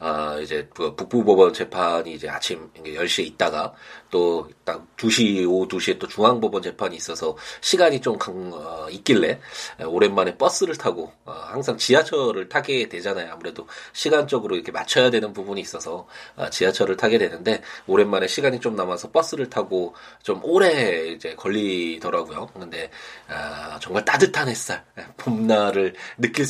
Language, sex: Korean, male